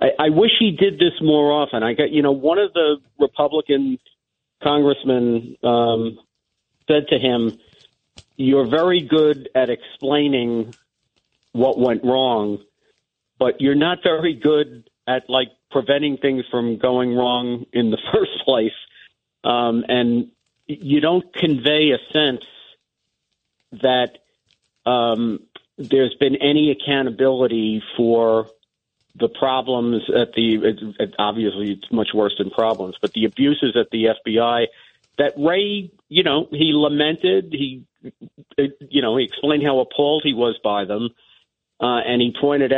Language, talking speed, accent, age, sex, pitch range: English, 135 wpm, American, 50-69, male, 115-145 Hz